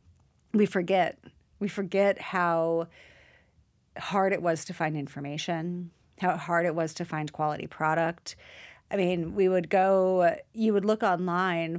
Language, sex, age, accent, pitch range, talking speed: English, female, 30-49, American, 170-200 Hz, 145 wpm